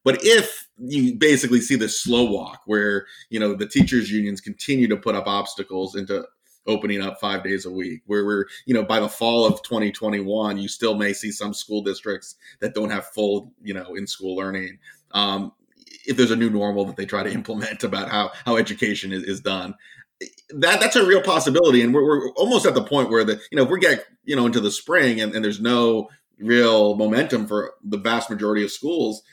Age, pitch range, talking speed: 30-49, 100-120 Hz, 215 wpm